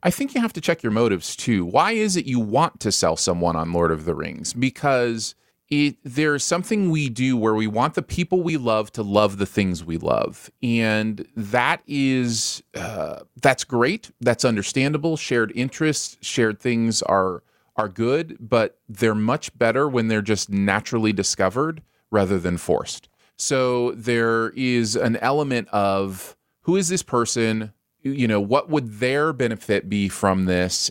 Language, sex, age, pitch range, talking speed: English, male, 30-49, 100-135 Hz, 165 wpm